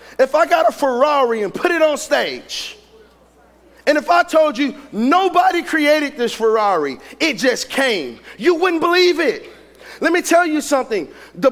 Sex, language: male, English